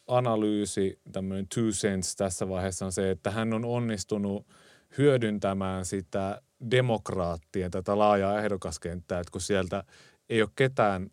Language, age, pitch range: Finnish, 30-49, 95-115 Hz